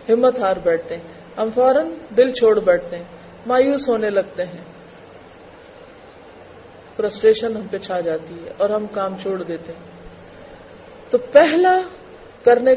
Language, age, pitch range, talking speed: Urdu, 40-59, 230-330 Hz, 135 wpm